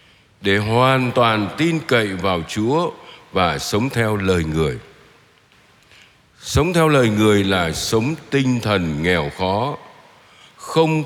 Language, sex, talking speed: Vietnamese, male, 125 wpm